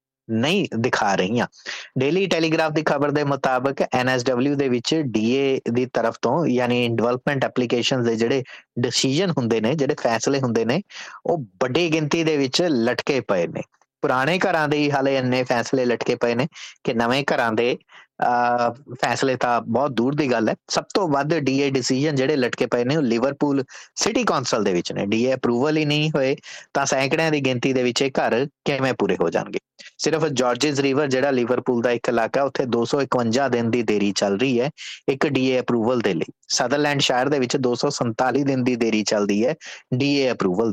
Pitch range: 120-140 Hz